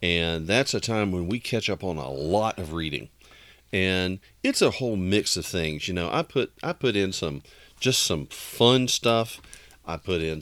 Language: English